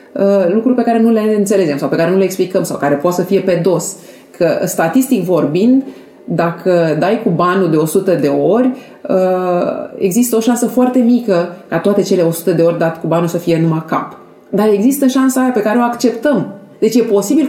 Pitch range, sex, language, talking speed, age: 190-255 Hz, female, English, 200 wpm, 30-49